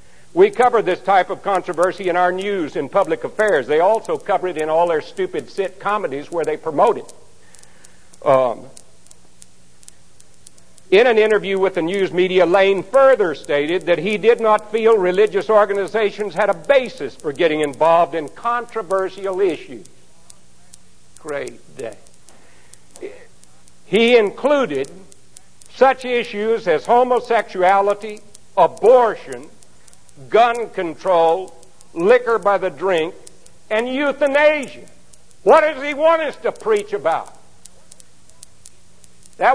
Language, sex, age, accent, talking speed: English, male, 60-79, American, 120 wpm